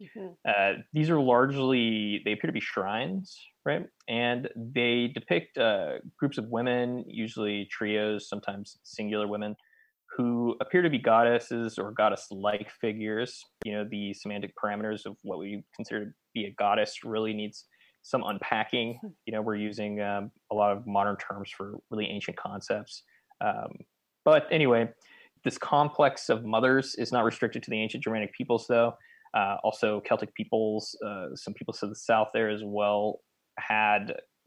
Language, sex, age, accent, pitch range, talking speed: English, male, 20-39, American, 105-130 Hz, 160 wpm